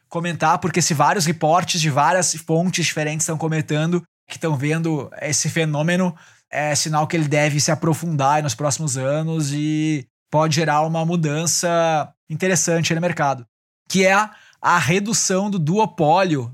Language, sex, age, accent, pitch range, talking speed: Portuguese, male, 20-39, Brazilian, 150-175 Hz, 145 wpm